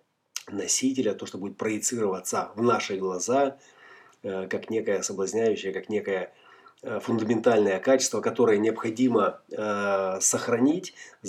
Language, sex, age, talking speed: Russian, male, 30-49, 95 wpm